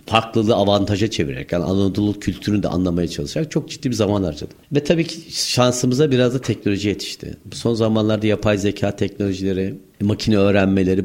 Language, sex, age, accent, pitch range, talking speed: Turkish, male, 50-69, native, 100-125 Hz, 160 wpm